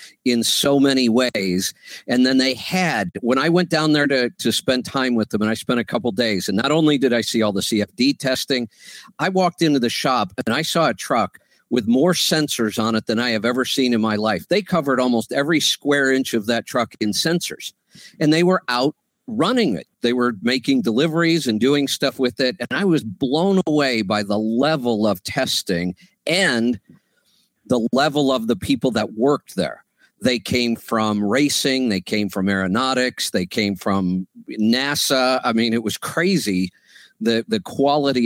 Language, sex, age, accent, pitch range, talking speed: English, male, 50-69, American, 115-155 Hz, 195 wpm